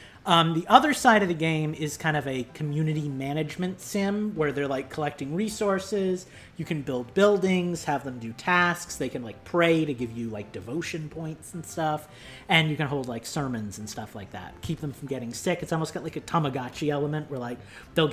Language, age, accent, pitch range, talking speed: English, 30-49, American, 130-170 Hz, 210 wpm